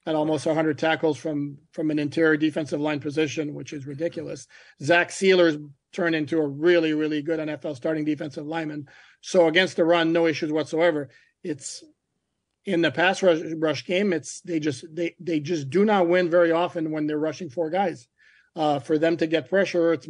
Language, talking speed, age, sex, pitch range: English, 190 wpm, 40-59, male, 155-170 Hz